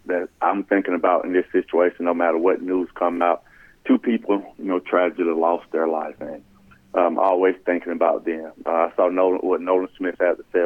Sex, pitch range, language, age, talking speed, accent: male, 95-110 Hz, English, 40-59, 205 wpm, American